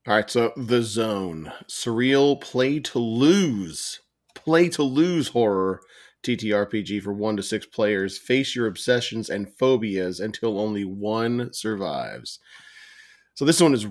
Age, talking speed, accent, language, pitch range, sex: 30-49, 140 wpm, American, English, 105-130 Hz, male